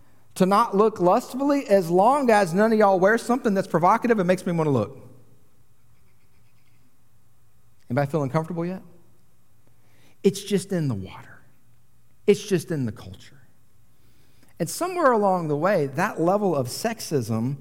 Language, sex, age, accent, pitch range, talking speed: English, male, 50-69, American, 125-195 Hz, 150 wpm